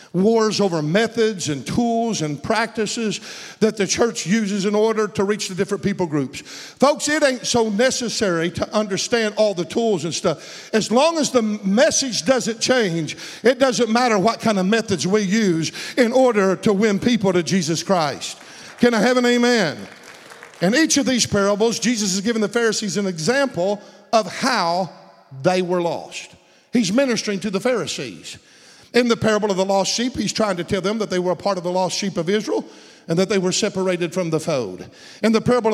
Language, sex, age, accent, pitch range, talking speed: English, male, 50-69, American, 195-235 Hz, 195 wpm